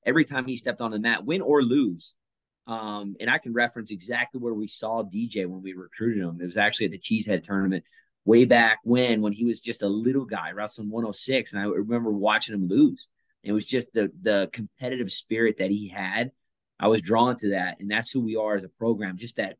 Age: 30-49